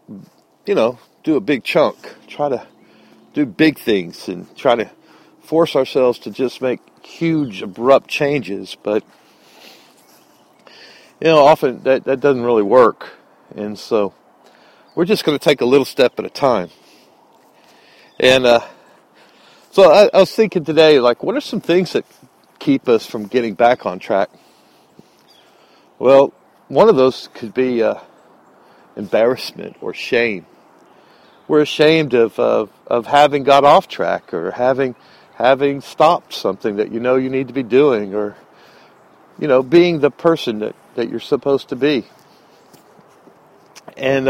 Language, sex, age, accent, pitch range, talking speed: English, male, 50-69, American, 120-150 Hz, 150 wpm